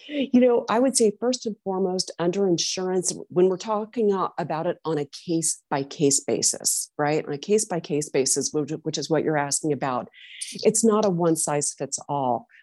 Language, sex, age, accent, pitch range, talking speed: English, female, 40-59, American, 150-190 Hz, 160 wpm